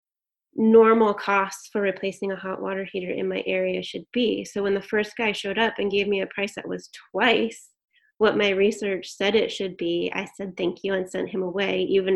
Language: English